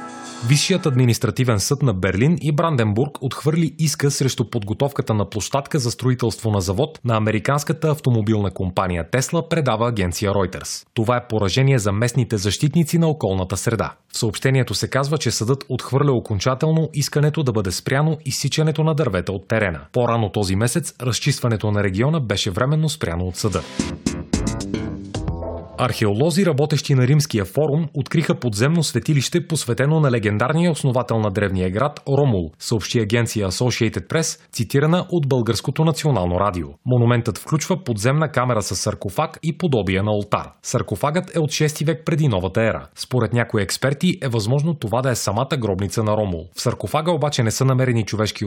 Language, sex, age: Bulgarian, male, 30-49